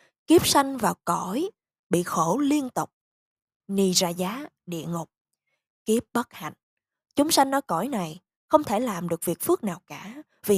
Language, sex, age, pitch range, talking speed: Vietnamese, female, 20-39, 175-270 Hz, 170 wpm